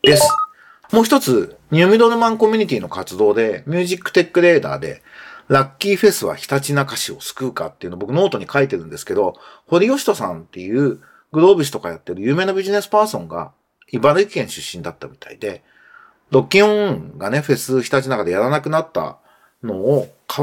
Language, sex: Japanese, male